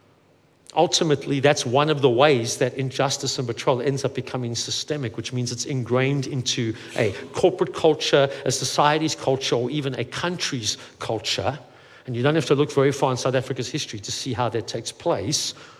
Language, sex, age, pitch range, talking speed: English, male, 50-69, 125-165 Hz, 180 wpm